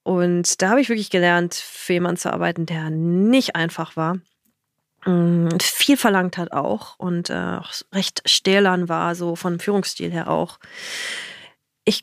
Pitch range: 180-210 Hz